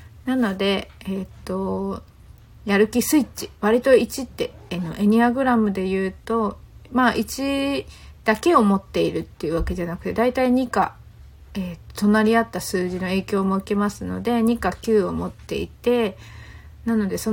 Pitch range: 185-250 Hz